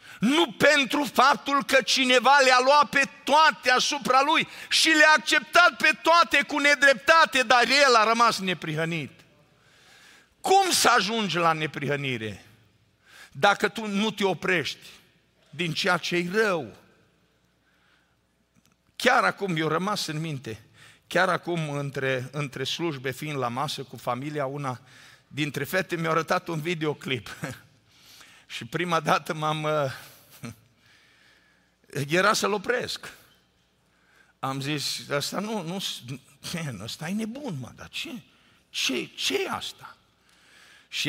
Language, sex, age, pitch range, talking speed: Romanian, male, 50-69, 135-215 Hz, 120 wpm